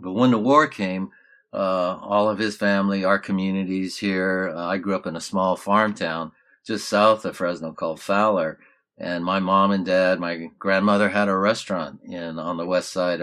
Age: 50-69